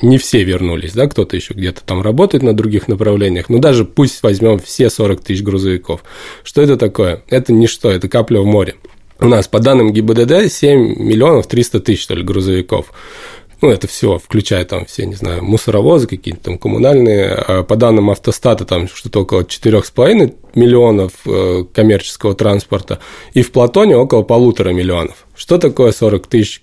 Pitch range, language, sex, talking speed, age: 95-115 Hz, Russian, male, 160 wpm, 20-39